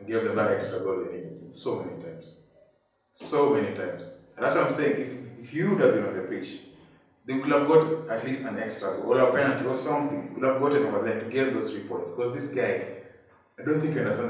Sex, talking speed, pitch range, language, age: male, 255 wpm, 115-160 Hz, English, 30-49